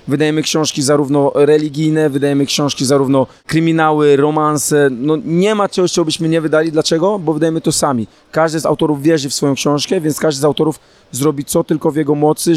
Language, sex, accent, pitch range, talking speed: Polish, male, native, 150-170 Hz, 185 wpm